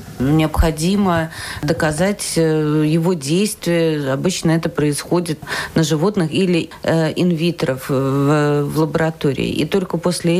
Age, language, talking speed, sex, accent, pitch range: 40-59, Russian, 105 wpm, female, native, 155-180 Hz